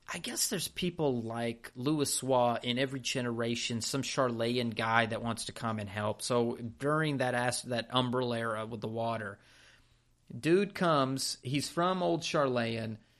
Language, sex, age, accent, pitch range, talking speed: English, male, 30-49, American, 115-140 Hz, 160 wpm